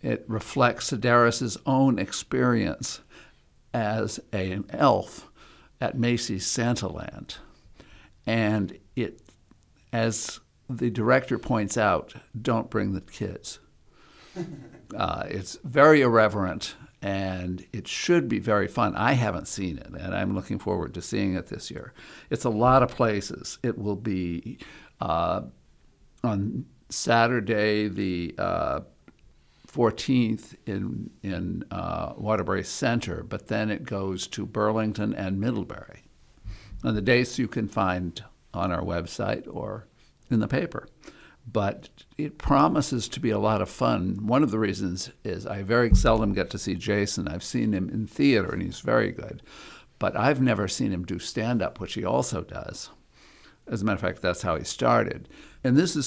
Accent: American